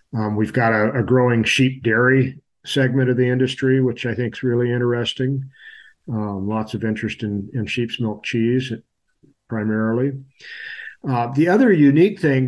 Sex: male